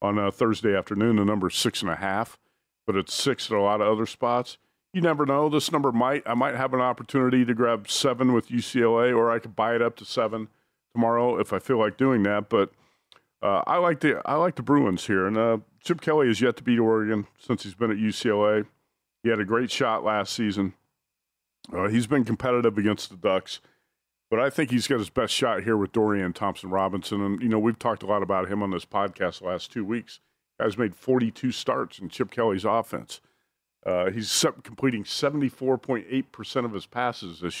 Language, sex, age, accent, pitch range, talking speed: English, male, 40-59, American, 105-130 Hz, 215 wpm